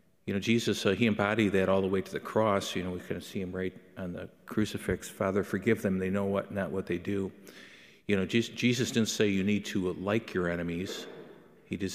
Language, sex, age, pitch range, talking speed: English, male, 50-69, 90-105 Hz, 240 wpm